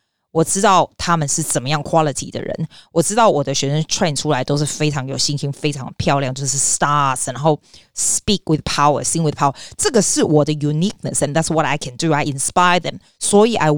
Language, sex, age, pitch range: Chinese, female, 20-39, 150-205 Hz